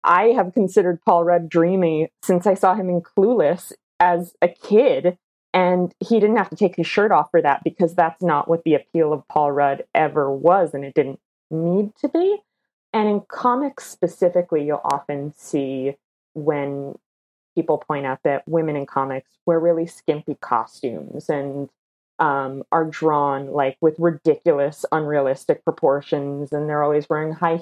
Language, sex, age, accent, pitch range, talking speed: English, female, 30-49, American, 145-180 Hz, 165 wpm